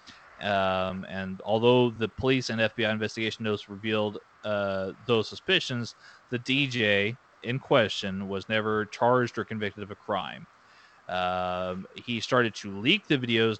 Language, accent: English, American